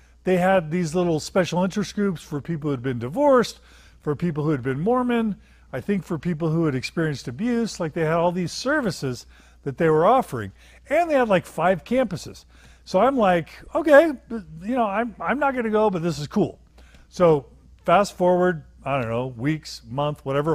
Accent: American